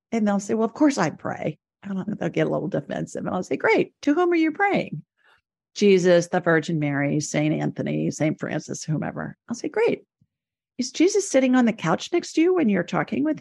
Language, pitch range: English, 165-270 Hz